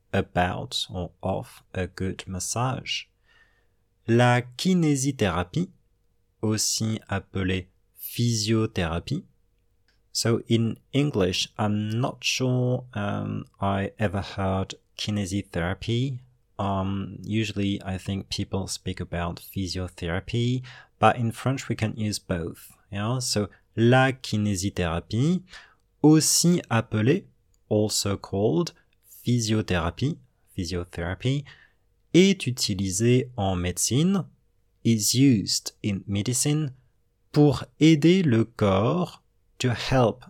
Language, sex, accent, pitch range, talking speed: English, male, French, 95-125 Hz, 90 wpm